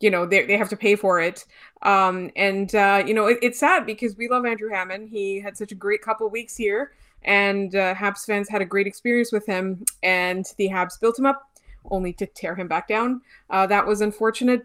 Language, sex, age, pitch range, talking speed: English, female, 20-39, 195-225 Hz, 235 wpm